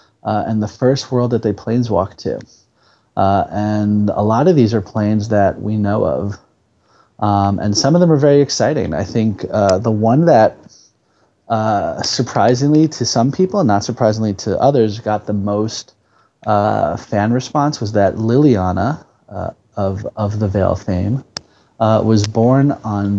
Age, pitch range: 30-49, 100-120 Hz